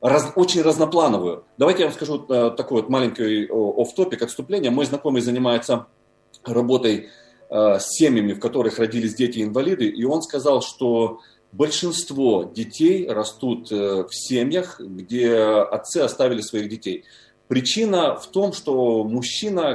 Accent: native